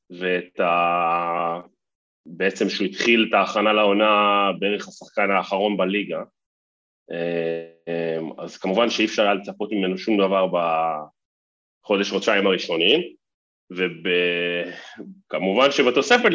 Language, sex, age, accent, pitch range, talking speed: Hebrew, male, 30-49, Italian, 95-135 Hz, 90 wpm